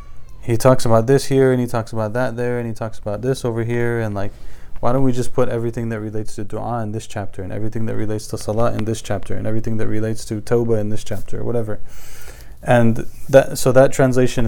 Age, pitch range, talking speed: 20-39, 105-125 Hz, 240 wpm